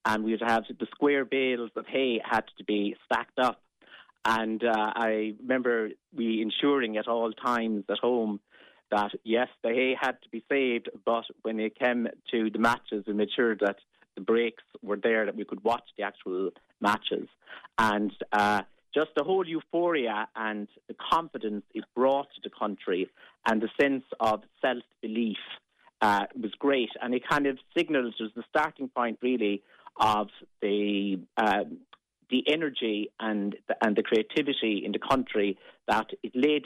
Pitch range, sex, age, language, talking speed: 105-130 Hz, male, 30-49, English, 165 wpm